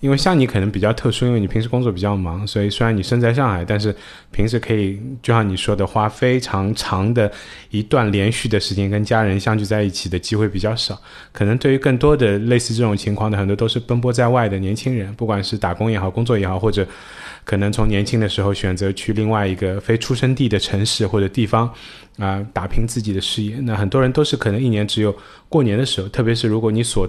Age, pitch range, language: 20-39, 100-120 Hz, Chinese